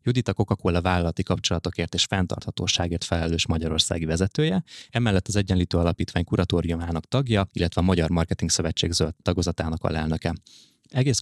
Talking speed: 140 wpm